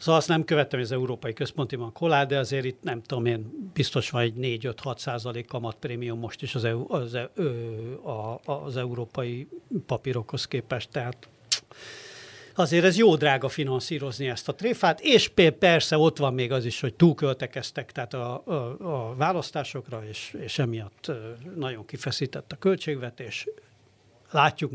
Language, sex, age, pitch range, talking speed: Hungarian, male, 60-79, 125-160 Hz, 150 wpm